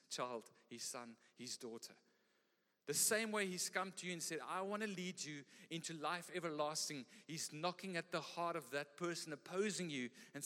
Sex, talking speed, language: male, 190 wpm, English